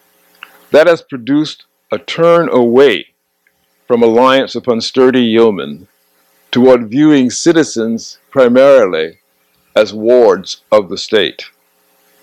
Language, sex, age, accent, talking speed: English, male, 60-79, American, 100 wpm